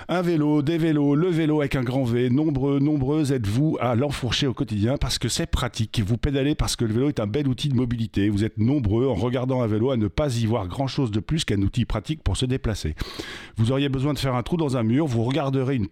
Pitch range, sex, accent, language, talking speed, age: 110-145 Hz, male, French, French, 255 wpm, 50-69